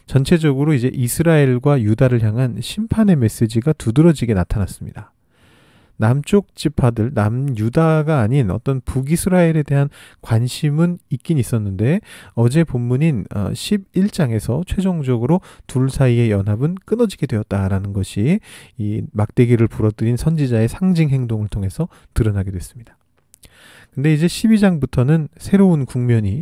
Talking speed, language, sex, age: 100 wpm, English, male, 40-59